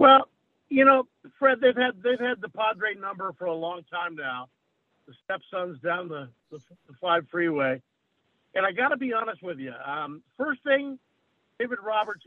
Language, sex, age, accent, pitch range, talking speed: English, male, 50-69, American, 175-235 Hz, 175 wpm